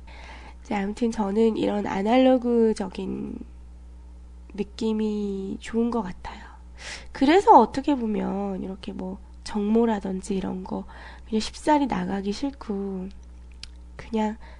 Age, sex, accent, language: 20-39, female, native, Korean